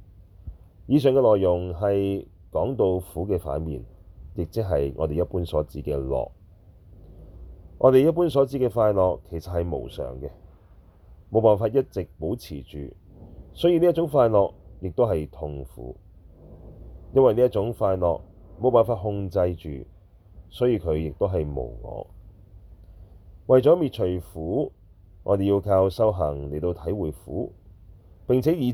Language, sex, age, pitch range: Chinese, male, 30-49, 85-110 Hz